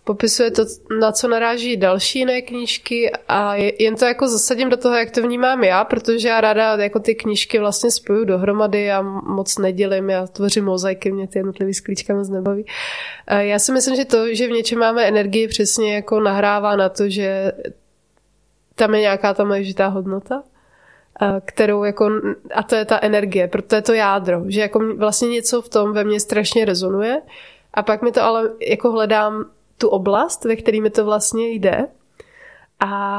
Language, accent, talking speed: Czech, native, 175 wpm